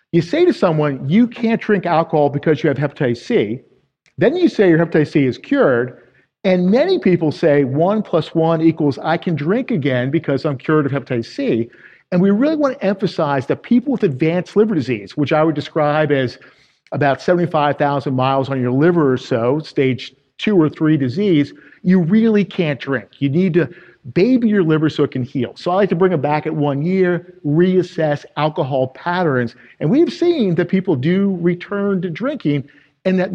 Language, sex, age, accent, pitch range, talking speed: English, male, 50-69, American, 145-195 Hz, 195 wpm